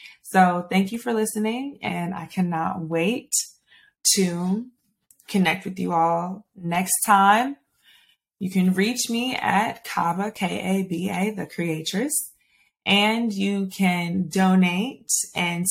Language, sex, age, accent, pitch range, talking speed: English, female, 20-39, American, 175-215 Hz, 115 wpm